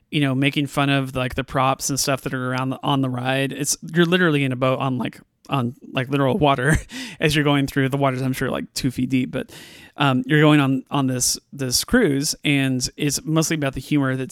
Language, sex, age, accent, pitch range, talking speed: English, male, 30-49, American, 130-150 Hz, 235 wpm